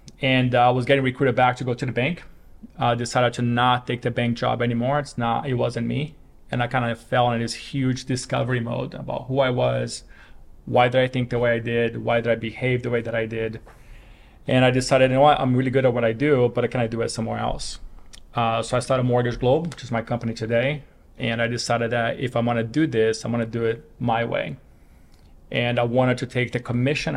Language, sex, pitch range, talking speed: English, male, 115-130 Hz, 245 wpm